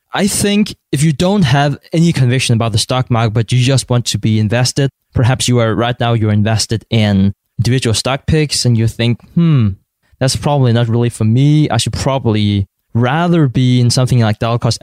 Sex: male